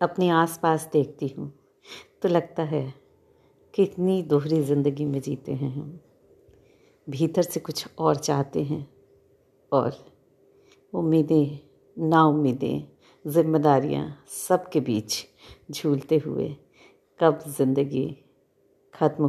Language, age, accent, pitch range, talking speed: Hindi, 50-69, native, 145-190 Hz, 95 wpm